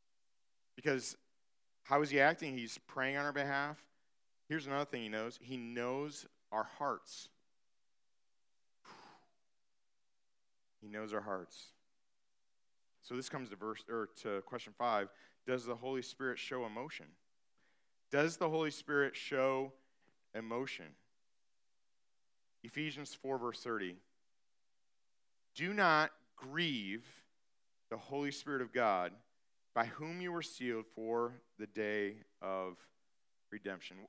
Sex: male